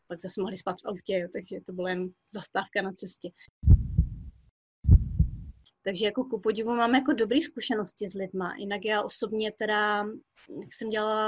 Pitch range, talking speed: 210-260 Hz, 165 wpm